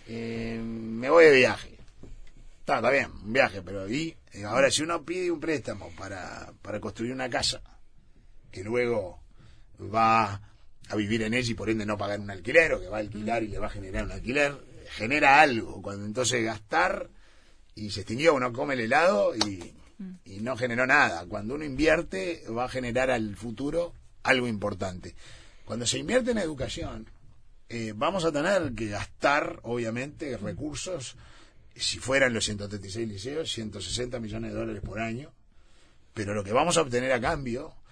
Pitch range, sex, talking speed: 105-130 Hz, male, 170 wpm